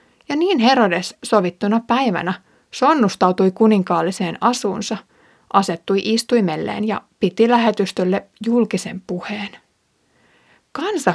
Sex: female